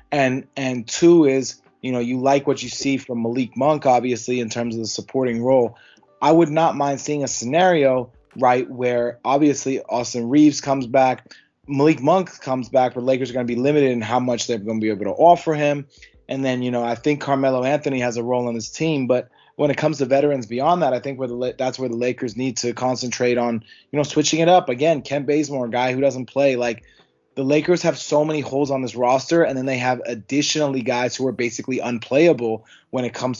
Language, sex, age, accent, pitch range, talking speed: English, male, 20-39, American, 120-150 Hz, 230 wpm